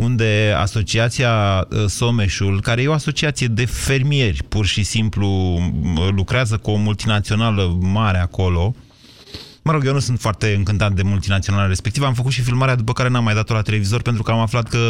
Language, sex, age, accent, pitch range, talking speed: Romanian, male, 30-49, native, 100-135 Hz, 175 wpm